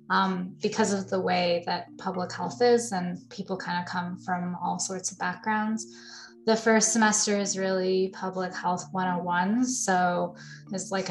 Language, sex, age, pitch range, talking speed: English, female, 20-39, 180-205 Hz, 160 wpm